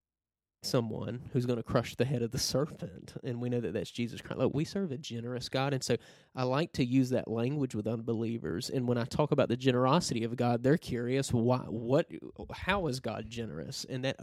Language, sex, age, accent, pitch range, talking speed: English, male, 20-39, American, 115-135 Hz, 220 wpm